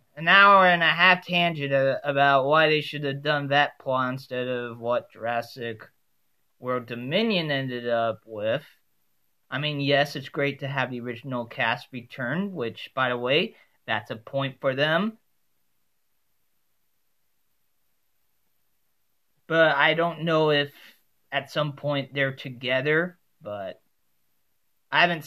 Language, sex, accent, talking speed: English, male, American, 135 wpm